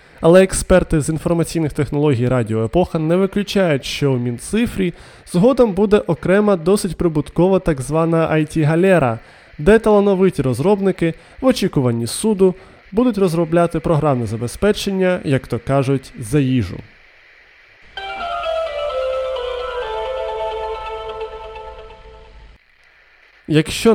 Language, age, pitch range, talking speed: Ukrainian, 20-39, 135-185 Hz, 90 wpm